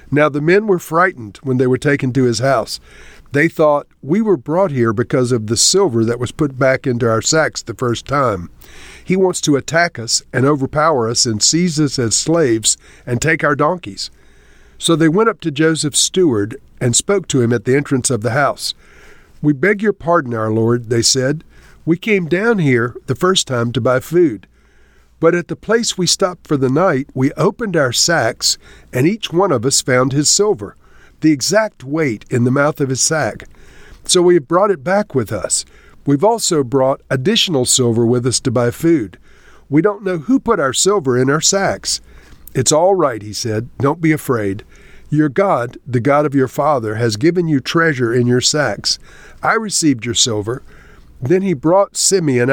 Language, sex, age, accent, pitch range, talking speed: English, male, 50-69, American, 125-170 Hz, 195 wpm